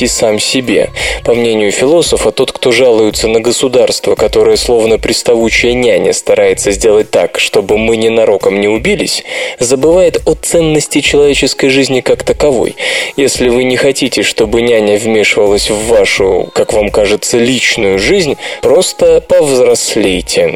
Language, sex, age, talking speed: Russian, male, 20-39, 130 wpm